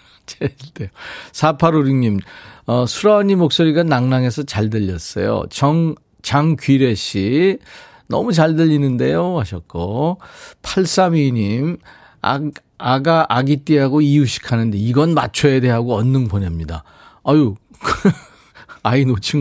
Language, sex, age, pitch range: Korean, male, 40-59, 110-155 Hz